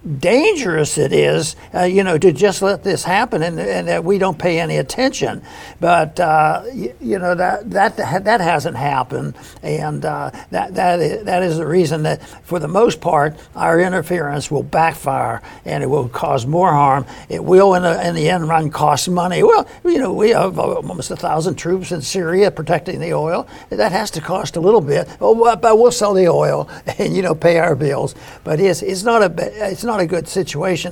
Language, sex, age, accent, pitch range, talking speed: English, male, 60-79, American, 160-195 Hz, 205 wpm